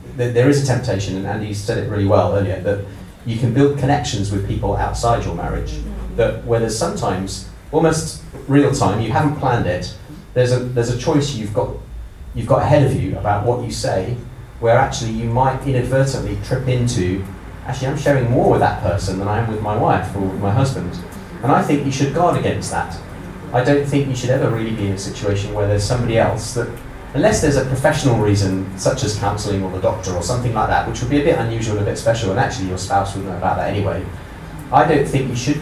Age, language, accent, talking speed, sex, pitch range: 30-49, English, British, 225 wpm, male, 100-125 Hz